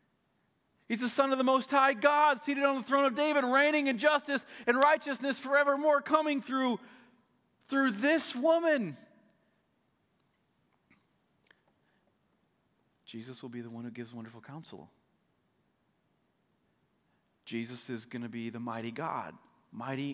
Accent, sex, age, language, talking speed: American, male, 30-49, English, 130 wpm